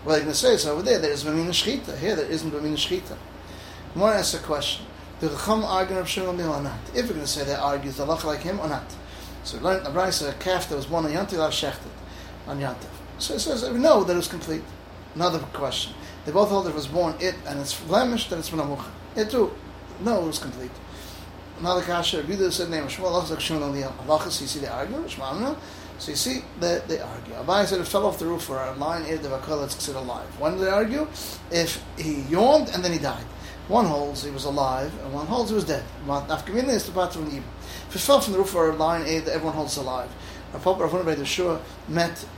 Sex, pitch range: male, 135-180 Hz